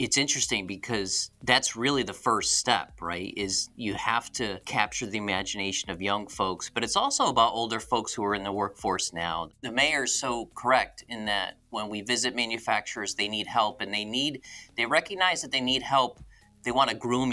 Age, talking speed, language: 40-59, 200 wpm, English